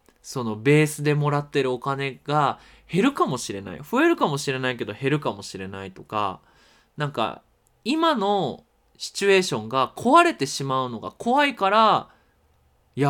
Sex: male